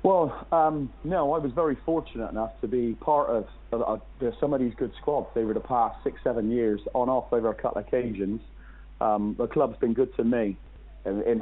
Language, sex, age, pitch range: English, male, 40-59, 110-130 Hz